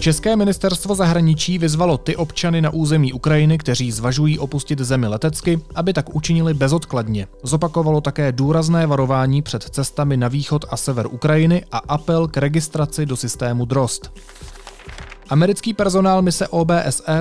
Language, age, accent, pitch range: Czech, 30-49, native, 125-155 Hz